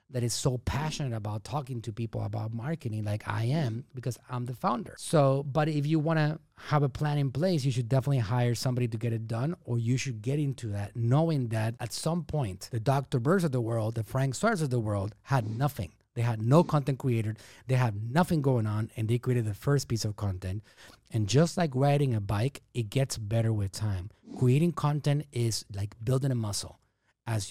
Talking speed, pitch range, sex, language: 215 wpm, 115-145 Hz, male, English